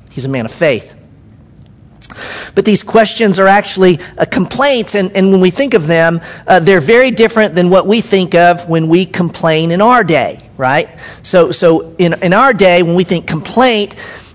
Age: 50-69